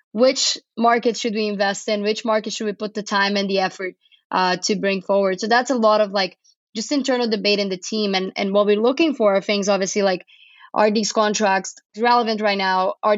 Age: 20-39